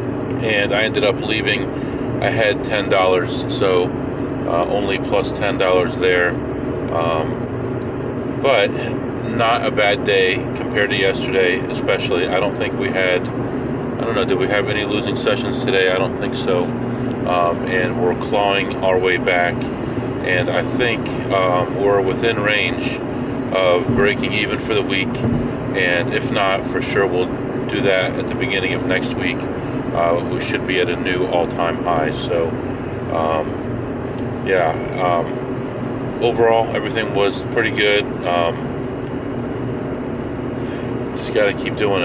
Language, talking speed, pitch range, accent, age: English, 145 wpm, 100-130 Hz, American, 40-59